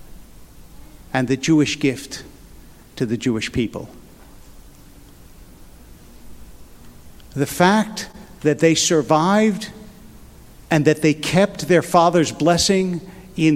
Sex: male